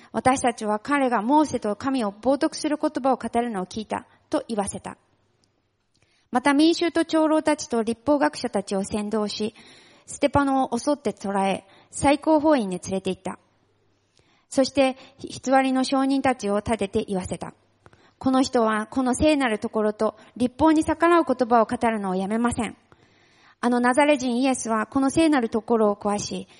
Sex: female